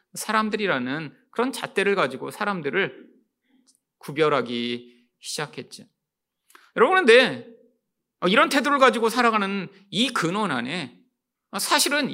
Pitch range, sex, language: 150-245 Hz, male, Korean